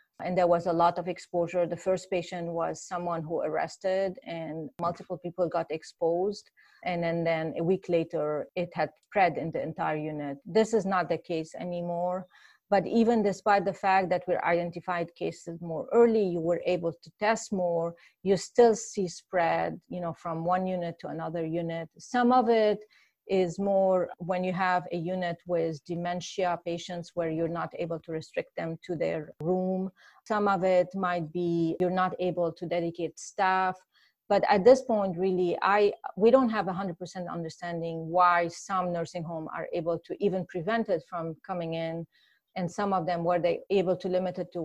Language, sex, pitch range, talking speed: English, female, 165-190 Hz, 185 wpm